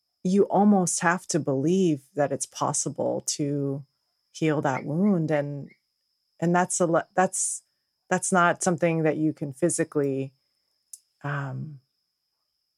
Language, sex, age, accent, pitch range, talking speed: English, female, 30-49, American, 150-185 Hz, 120 wpm